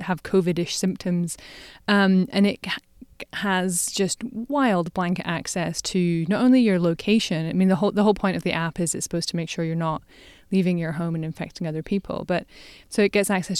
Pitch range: 175-200 Hz